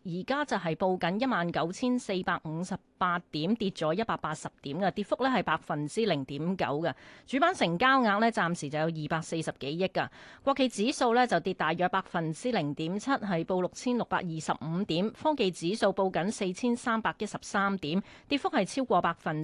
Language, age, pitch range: Chinese, 30-49, 165-225 Hz